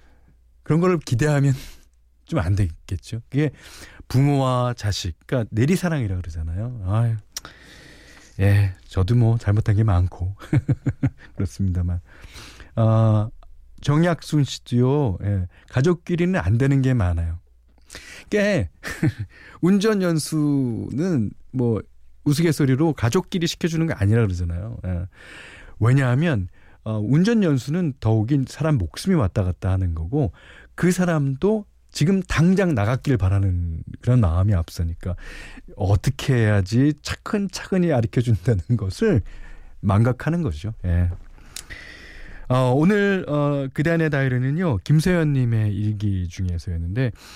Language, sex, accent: Korean, male, native